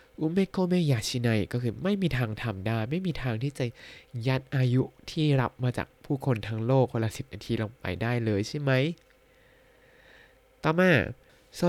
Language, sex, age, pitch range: Thai, male, 20-39, 110-150 Hz